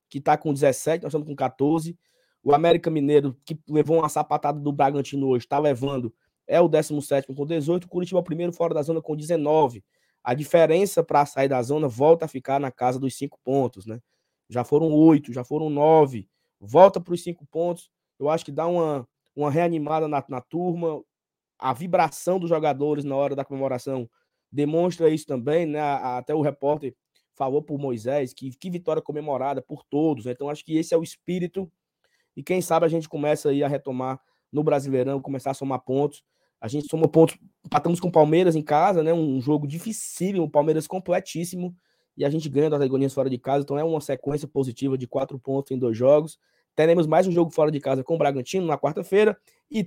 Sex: male